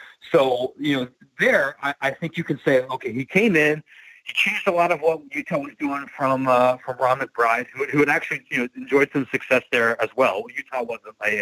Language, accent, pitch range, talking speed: English, American, 125-165 Hz, 220 wpm